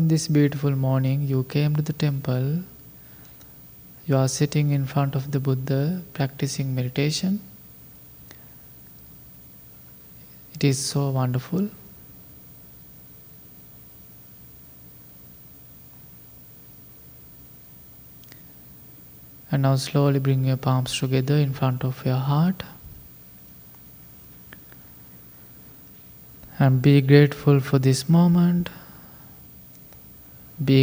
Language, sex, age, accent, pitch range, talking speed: English, male, 20-39, Indian, 125-145 Hz, 80 wpm